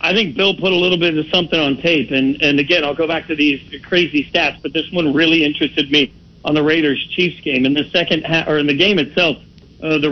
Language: English